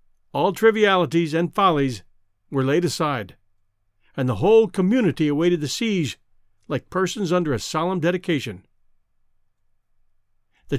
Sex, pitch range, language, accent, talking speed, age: male, 115-190 Hz, English, American, 115 wpm, 50-69